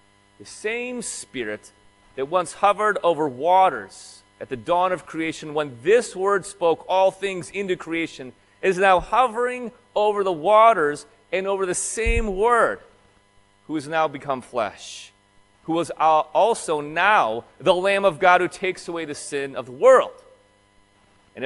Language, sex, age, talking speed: English, male, 40-59, 150 wpm